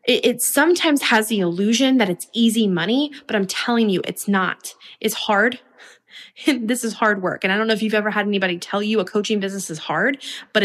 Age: 20-39